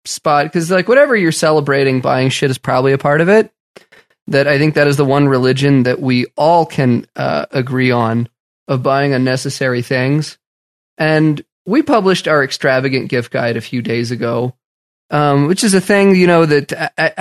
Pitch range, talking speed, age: 135-170 Hz, 185 wpm, 20-39